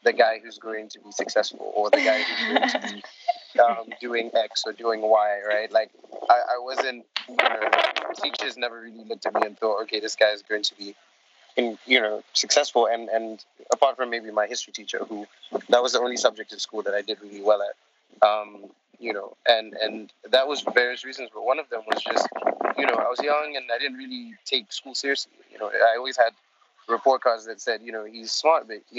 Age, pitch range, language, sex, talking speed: 20-39, 110-125 Hz, English, male, 230 wpm